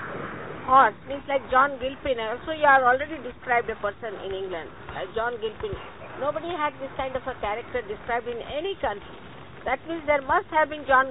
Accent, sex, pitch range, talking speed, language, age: Indian, female, 260-355 Hz, 190 wpm, English, 50-69